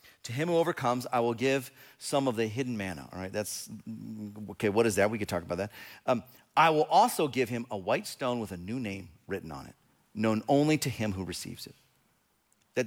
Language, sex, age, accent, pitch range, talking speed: English, male, 40-59, American, 120-170 Hz, 225 wpm